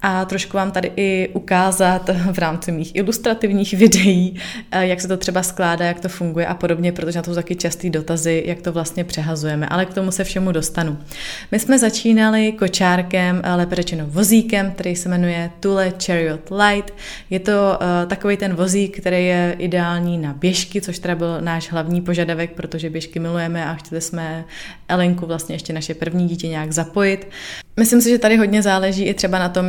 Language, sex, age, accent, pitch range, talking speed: Czech, female, 20-39, native, 165-190 Hz, 180 wpm